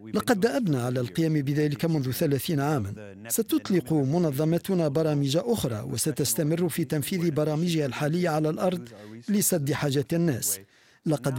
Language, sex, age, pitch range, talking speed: Arabic, male, 50-69, 140-175 Hz, 120 wpm